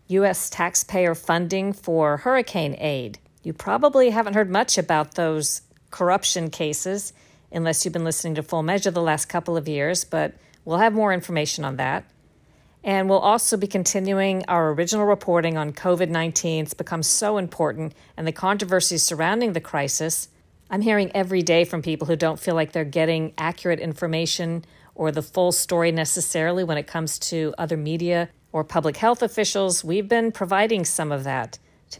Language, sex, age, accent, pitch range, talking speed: English, female, 50-69, American, 160-185 Hz, 170 wpm